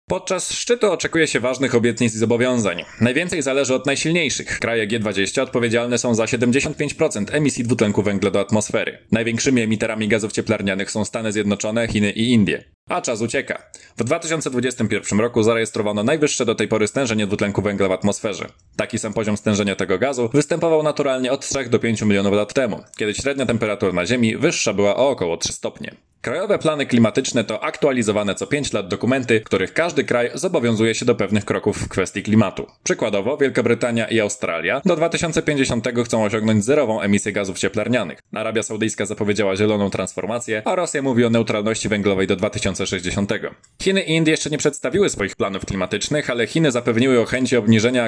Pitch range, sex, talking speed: 105-125 Hz, male, 170 wpm